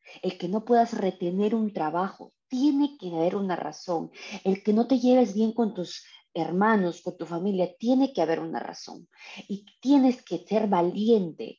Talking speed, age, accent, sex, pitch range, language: 175 wpm, 30-49, Mexican, female, 175-220 Hz, English